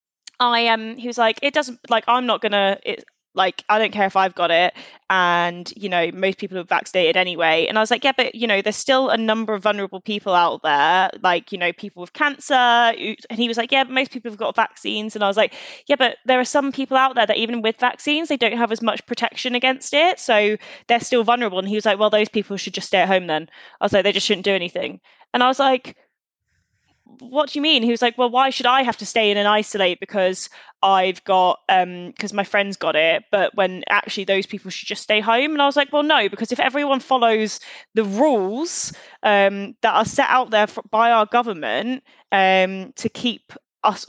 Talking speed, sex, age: 240 wpm, female, 10-29